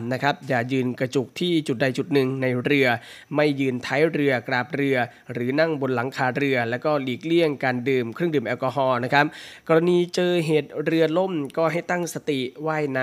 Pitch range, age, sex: 125-155 Hz, 20-39, male